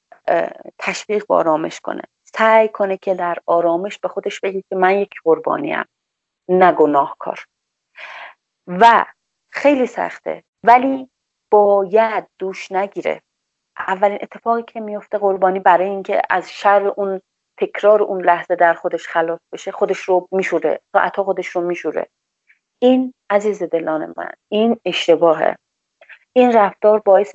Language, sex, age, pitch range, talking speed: Persian, female, 30-49, 170-205 Hz, 125 wpm